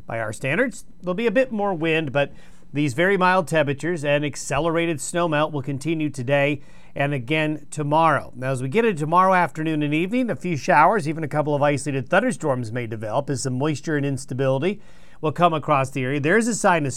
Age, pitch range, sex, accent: 40-59, 140-180 Hz, male, American